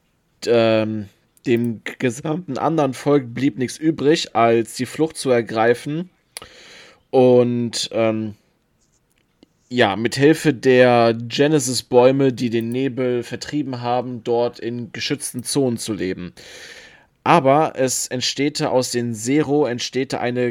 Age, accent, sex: 20-39, German, male